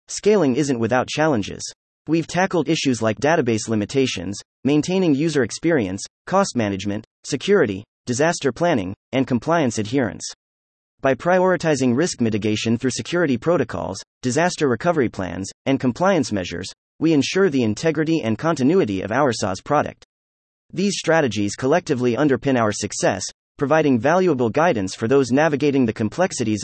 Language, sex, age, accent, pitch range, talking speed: English, male, 30-49, American, 110-160 Hz, 130 wpm